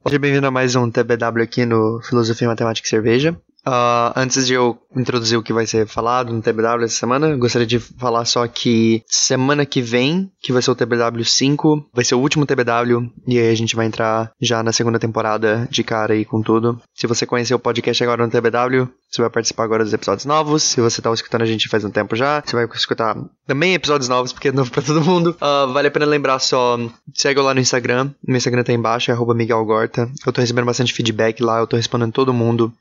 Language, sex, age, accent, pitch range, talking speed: Portuguese, male, 10-29, Brazilian, 115-130 Hz, 230 wpm